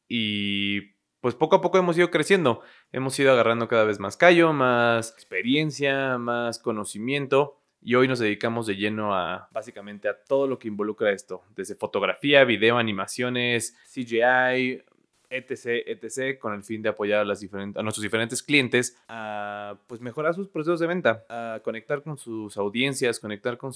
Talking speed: 160 wpm